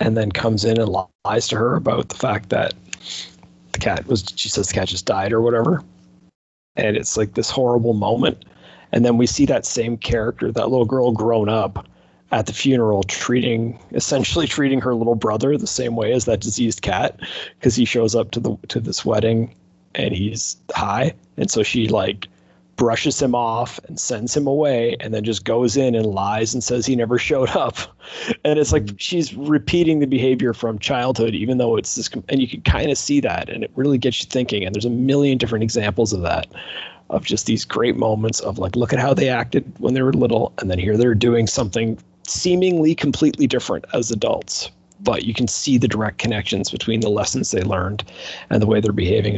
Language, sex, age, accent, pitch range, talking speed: English, male, 30-49, American, 105-130 Hz, 210 wpm